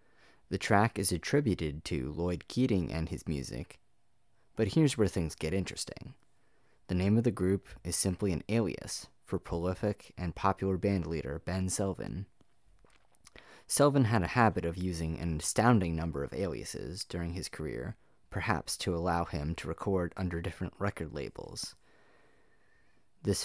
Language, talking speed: English, 145 wpm